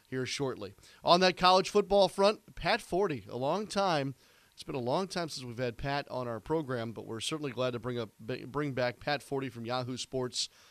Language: English